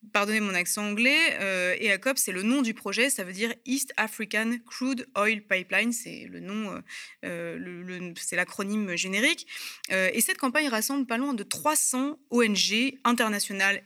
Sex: female